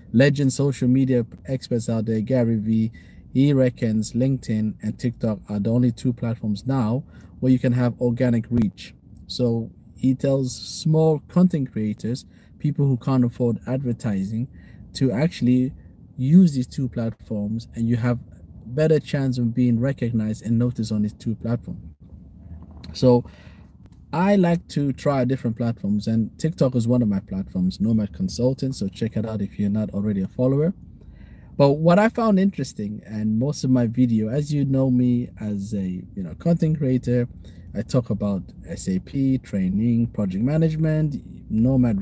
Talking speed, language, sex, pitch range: 155 wpm, English, male, 105-135 Hz